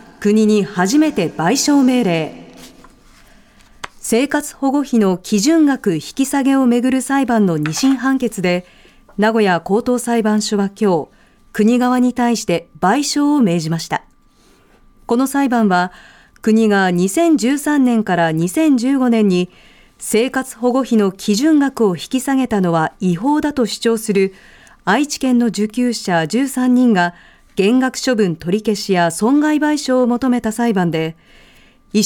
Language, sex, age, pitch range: Japanese, female, 40-59, 190-260 Hz